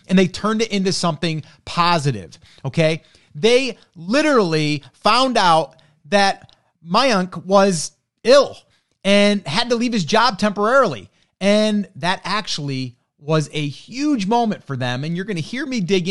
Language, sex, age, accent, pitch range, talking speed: English, male, 30-49, American, 145-220 Hz, 145 wpm